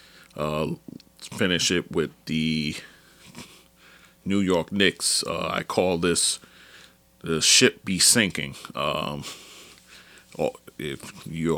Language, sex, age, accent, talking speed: English, male, 30-49, American, 110 wpm